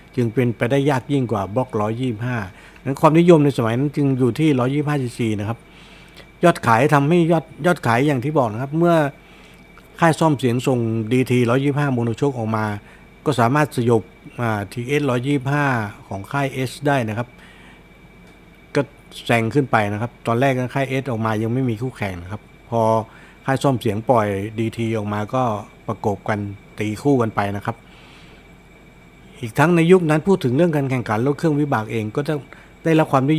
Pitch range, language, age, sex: 115-145 Hz, Thai, 60-79, male